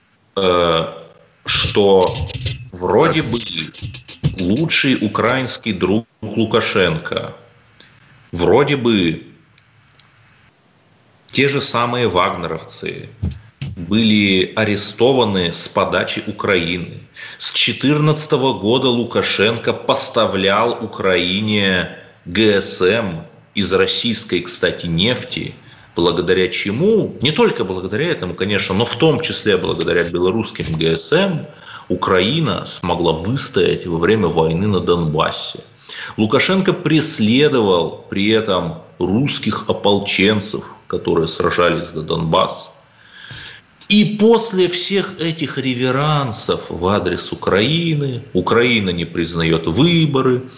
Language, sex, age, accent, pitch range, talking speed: Russian, male, 30-49, native, 95-130 Hz, 85 wpm